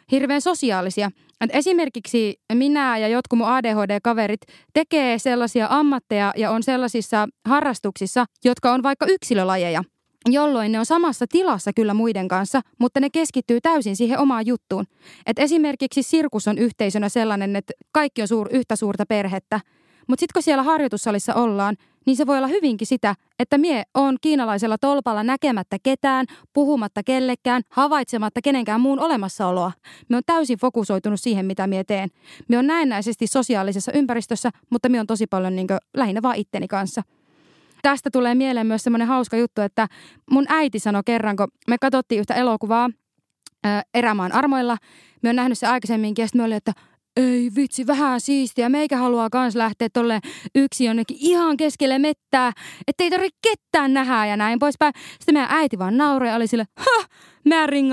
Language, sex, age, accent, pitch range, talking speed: Finnish, female, 20-39, native, 220-285 Hz, 160 wpm